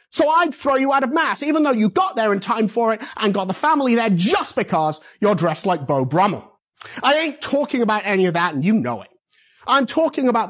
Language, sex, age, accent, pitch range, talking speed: English, male, 30-49, British, 175-255 Hz, 240 wpm